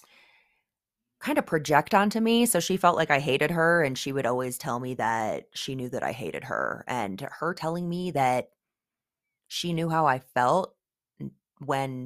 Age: 20-39